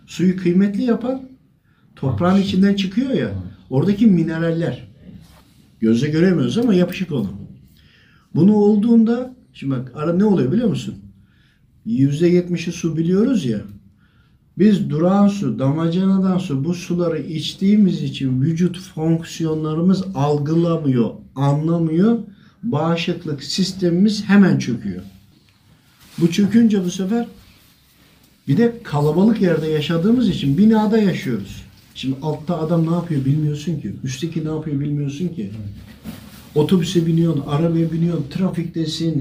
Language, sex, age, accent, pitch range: Japanese, male, 60-79, Turkish, 135-200 Hz